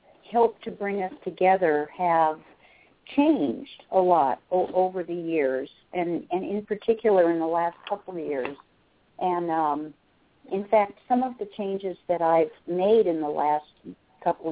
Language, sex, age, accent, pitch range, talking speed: English, female, 50-69, American, 170-215 Hz, 155 wpm